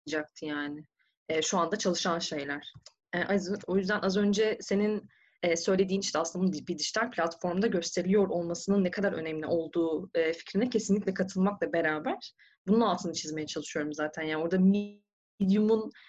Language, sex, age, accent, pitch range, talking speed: Turkish, female, 30-49, native, 170-225 Hz, 150 wpm